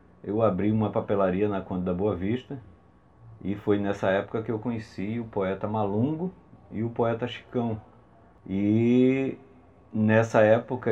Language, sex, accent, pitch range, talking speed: Portuguese, male, Brazilian, 95-115 Hz, 145 wpm